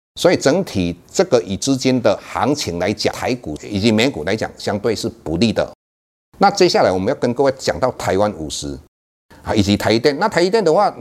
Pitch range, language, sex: 90-130 Hz, Chinese, male